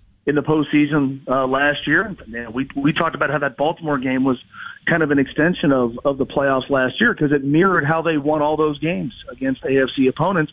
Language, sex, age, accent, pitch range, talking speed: English, male, 40-59, American, 135-160 Hz, 230 wpm